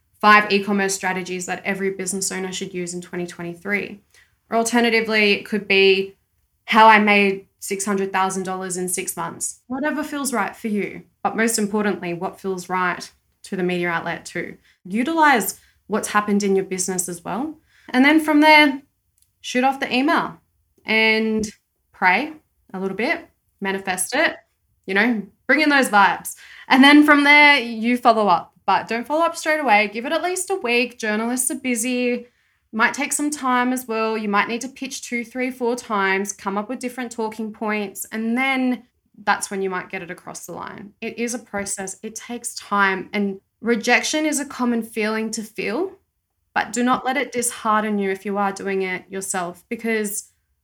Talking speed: 180 wpm